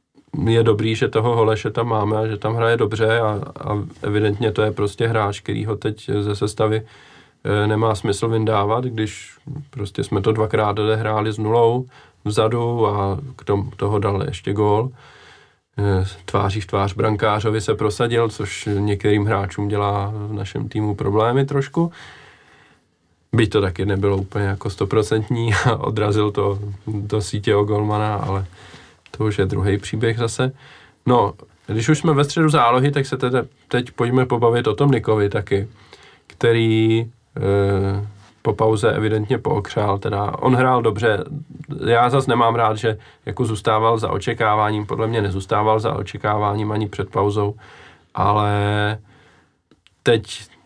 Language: Czech